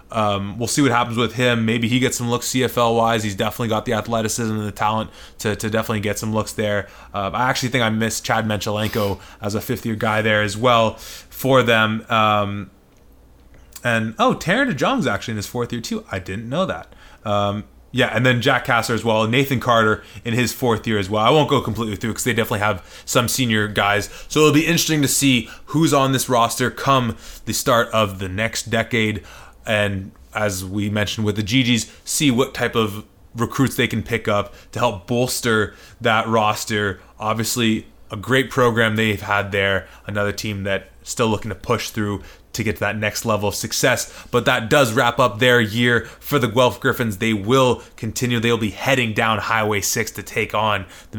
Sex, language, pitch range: male, English, 105-120 Hz